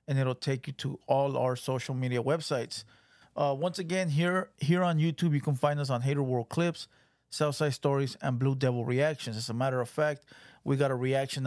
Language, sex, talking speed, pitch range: English, male, 215 wpm, 130-155 Hz